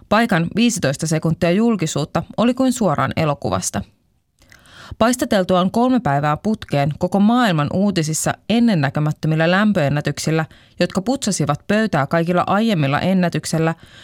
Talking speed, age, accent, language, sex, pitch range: 100 wpm, 20-39, native, Finnish, female, 145-200 Hz